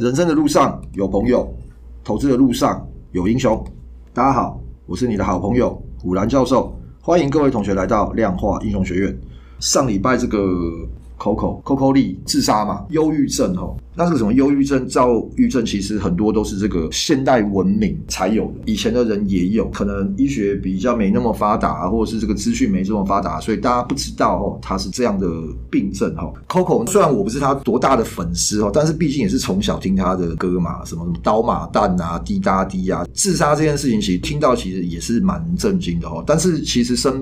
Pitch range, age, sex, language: 90-130 Hz, 30-49, male, Chinese